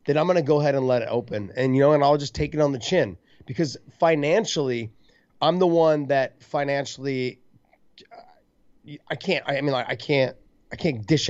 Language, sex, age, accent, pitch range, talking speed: English, male, 30-49, American, 120-150 Hz, 200 wpm